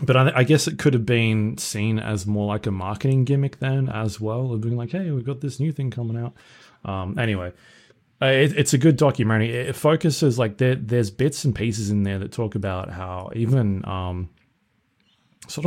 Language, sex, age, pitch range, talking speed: English, male, 20-39, 100-130 Hz, 205 wpm